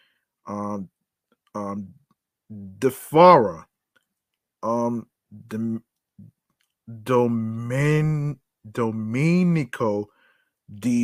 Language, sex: English, male